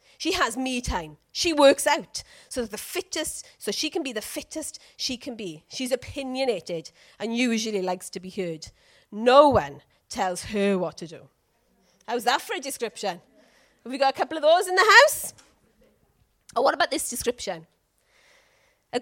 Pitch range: 215-315 Hz